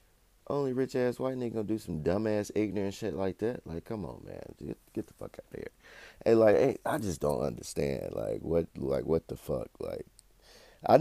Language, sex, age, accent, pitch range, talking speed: English, male, 30-49, American, 90-120 Hz, 220 wpm